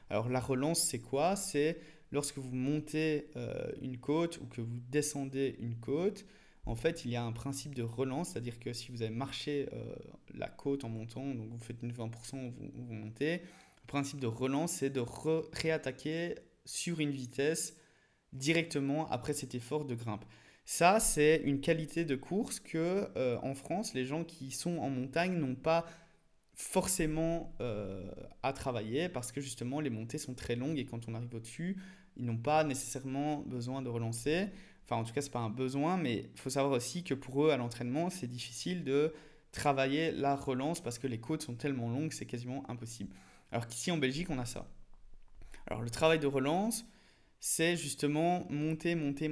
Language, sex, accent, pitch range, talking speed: French, male, French, 125-160 Hz, 185 wpm